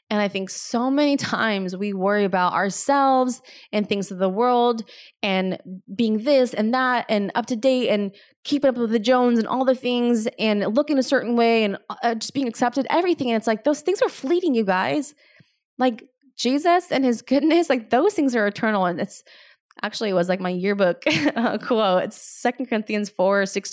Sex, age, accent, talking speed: female, 20-39, American, 200 wpm